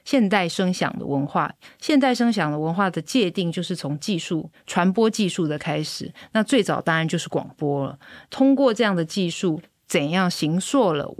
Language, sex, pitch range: Chinese, female, 155-195 Hz